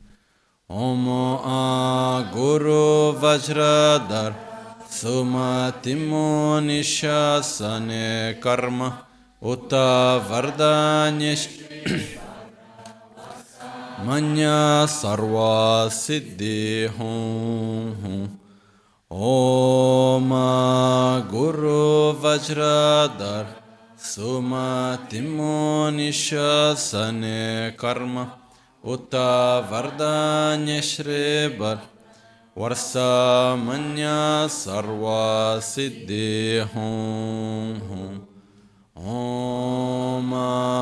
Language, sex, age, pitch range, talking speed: Italian, male, 30-49, 110-150 Hz, 35 wpm